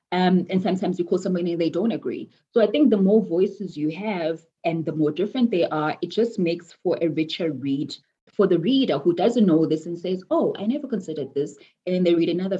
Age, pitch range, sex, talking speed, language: 20-39, 160-200 Hz, female, 240 wpm, English